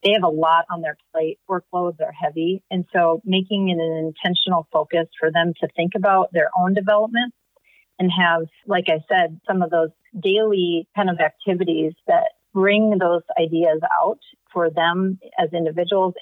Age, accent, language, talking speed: 30-49, American, English, 170 wpm